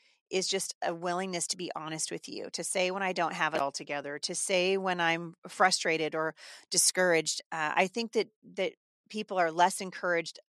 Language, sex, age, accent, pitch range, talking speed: English, female, 30-49, American, 160-200 Hz, 195 wpm